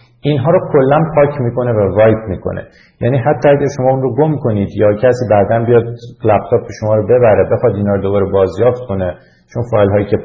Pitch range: 110-130 Hz